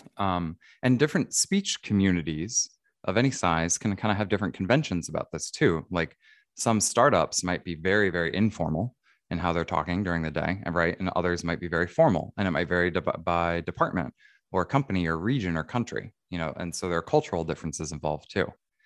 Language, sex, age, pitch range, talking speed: English, male, 20-39, 85-120 Hz, 200 wpm